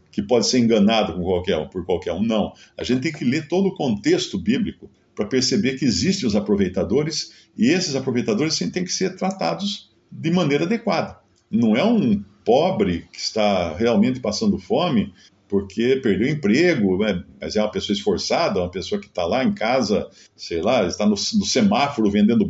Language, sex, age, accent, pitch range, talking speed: Portuguese, male, 50-69, Brazilian, 100-145 Hz, 185 wpm